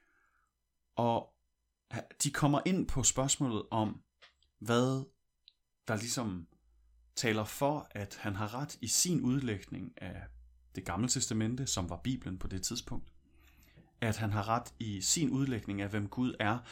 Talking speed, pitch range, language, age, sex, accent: 145 wpm, 95-130 Hz, Danish, 30-49, male, native